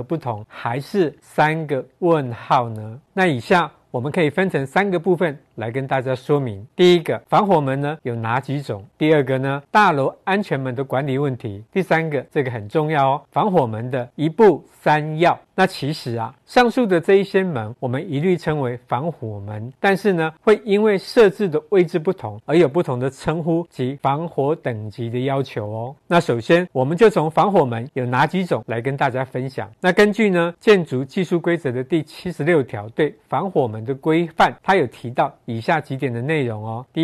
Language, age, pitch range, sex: Chinese, 50-69, 130-170 Hz, male